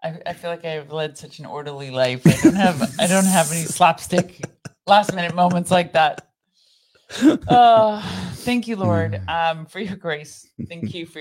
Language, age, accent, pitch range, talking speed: English, 40-59, American, 130-160 Hz, 185 wpm